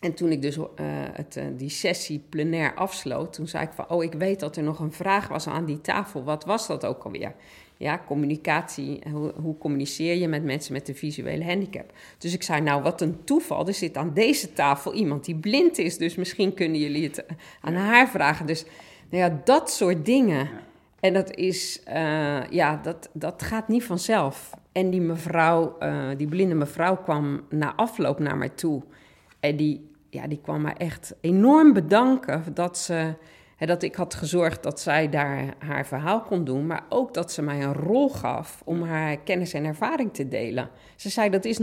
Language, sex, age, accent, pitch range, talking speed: Dutch, female, 50-69, Dutch, 150-185 Hz, 200 wpm